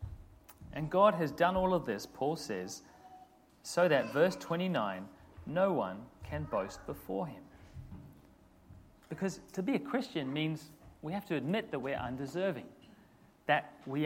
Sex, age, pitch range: male, 40-59, 125-175 Hz